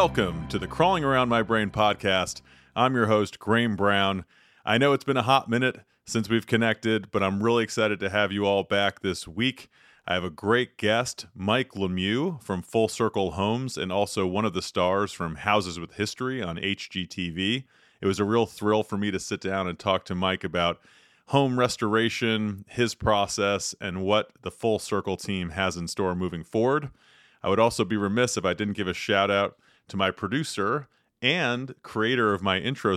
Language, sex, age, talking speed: English, male, 30-49, 195 wpm